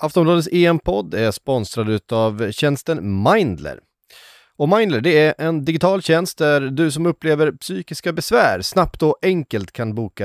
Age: 30-49